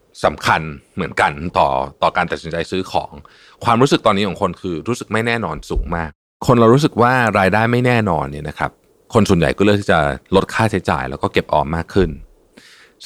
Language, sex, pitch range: Thai, male, 80-115 Hz